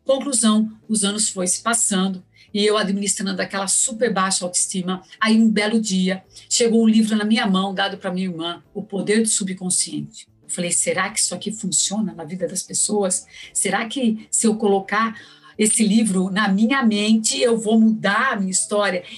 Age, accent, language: 50-69, Brazilian, Portuguese